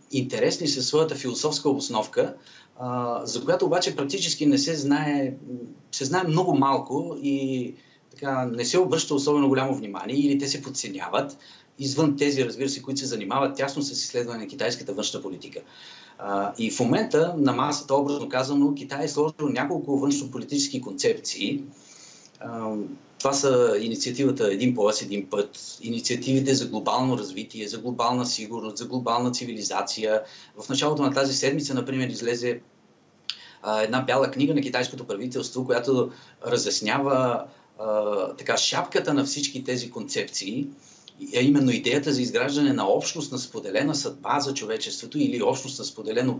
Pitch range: 125-145 Hz